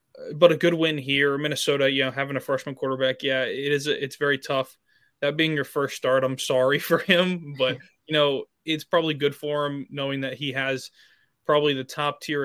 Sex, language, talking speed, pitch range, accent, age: male, English, 200 wpm, 130-150 Hz, American, 20-39